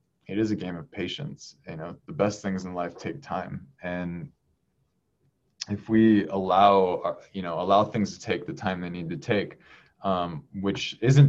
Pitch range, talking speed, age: 90-110 Hz, 180 wpm, 20-39